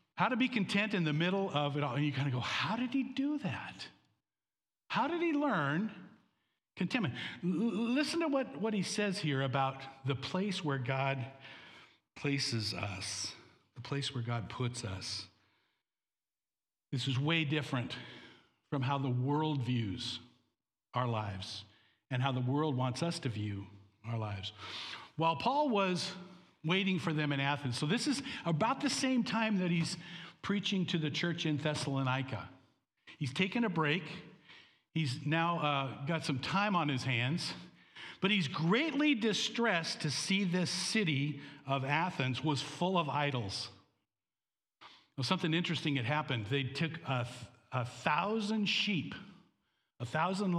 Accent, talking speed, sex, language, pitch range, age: American, 155 wpm, male, English, 130-185 Hz, 60-79